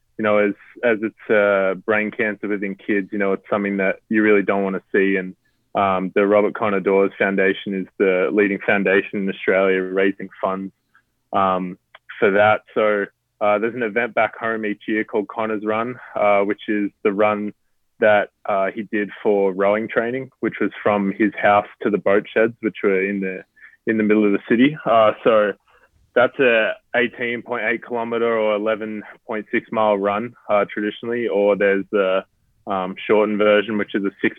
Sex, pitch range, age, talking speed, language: male, 100-110 Hz, 20-39, 180 wpm, English